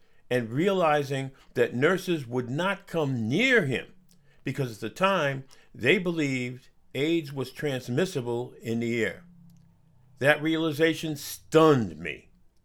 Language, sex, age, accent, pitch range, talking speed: English, male, 50-69, American, 115-160 Hz, 120 wpm